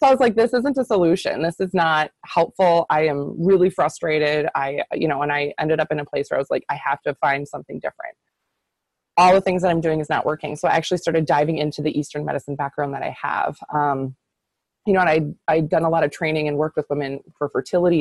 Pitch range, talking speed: 150-185 Hz, 250 wpm